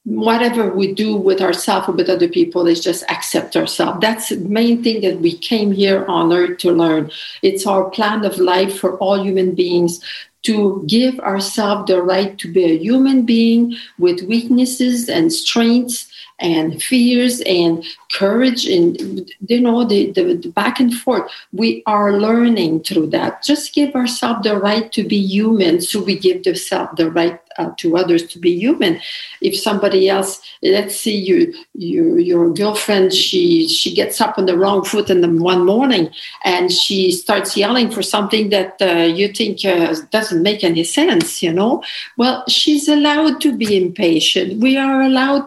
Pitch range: 185-250 Hz